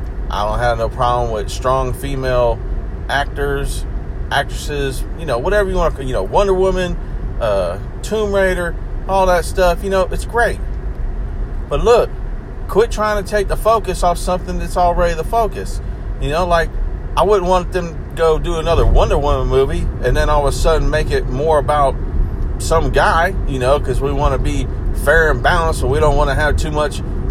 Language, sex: English, male